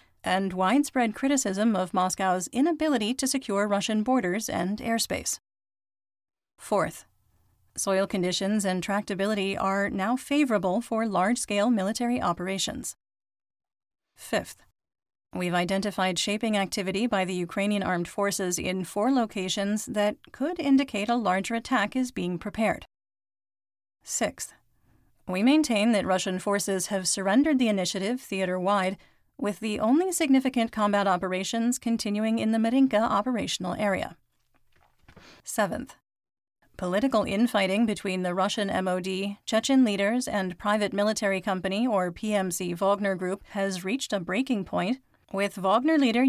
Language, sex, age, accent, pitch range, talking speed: English, female, 40-59, American, 190-230 Hz, 120 wpm